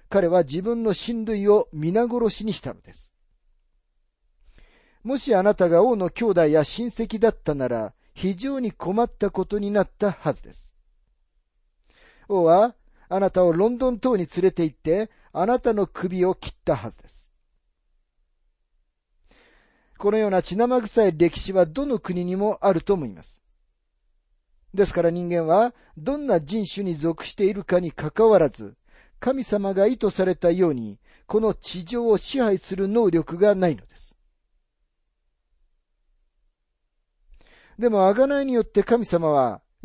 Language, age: Japanese, 40-59